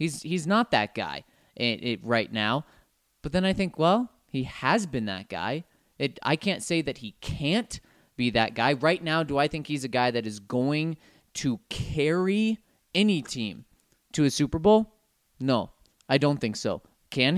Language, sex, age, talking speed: English, male, 20-39, 180 wpm